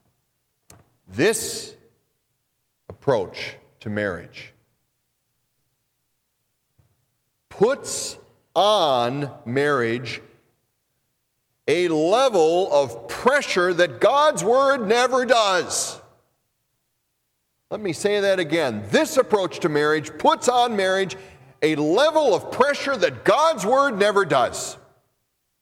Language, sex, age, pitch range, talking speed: English, male, 50-69, 140-225 Hz, 85 wpm